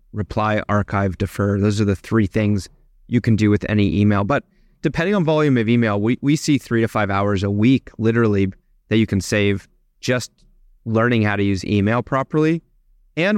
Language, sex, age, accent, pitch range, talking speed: English, male, 30-49, American, 105-130 Hz, 190 wpm